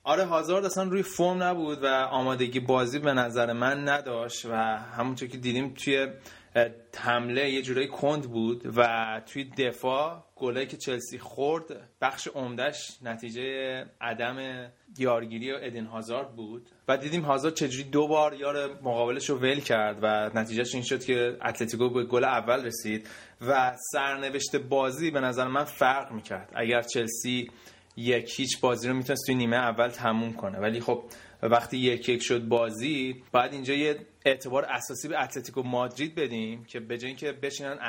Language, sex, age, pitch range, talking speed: Persian, male, 20-39, 115-135 Hz, 155 wpm